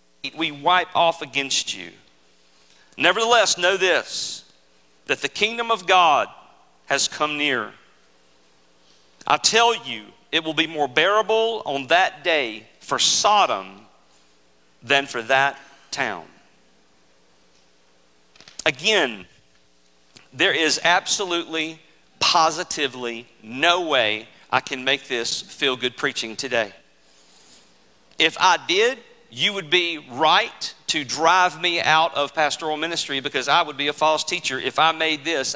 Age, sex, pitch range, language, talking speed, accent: 50-69, male, 115-195 Hz, English, 125 wpm, American